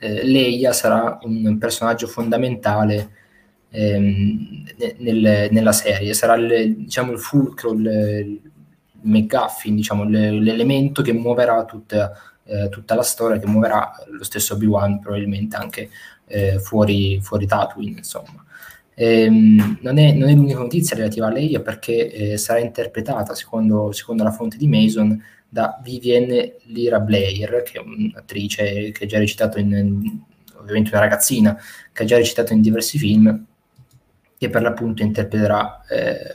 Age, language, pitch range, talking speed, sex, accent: 20-39, Italian, 105-120 Hz, 140 wpm, male, native